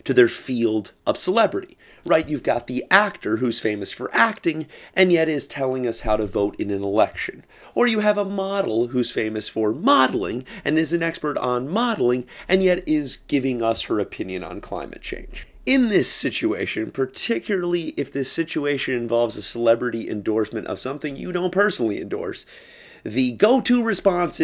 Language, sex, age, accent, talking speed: English, male, 30-49, American, 170 wpm